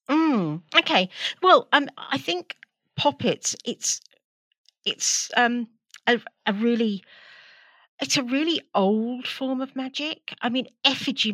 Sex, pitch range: female, 195-255 Hz